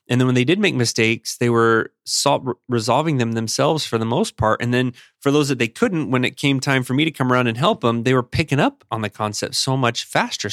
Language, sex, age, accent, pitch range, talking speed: English, male, 30-49, American, 110-125 Hz, 255 wpm